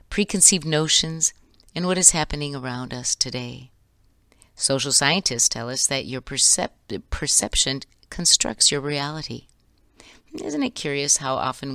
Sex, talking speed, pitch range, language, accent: female, 125 wpm, 125-160 Hz, English, American